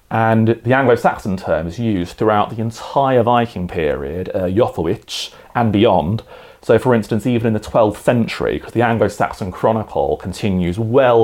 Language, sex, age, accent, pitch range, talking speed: English, male, 30-49, British, 105-140 Hz, 155 wpm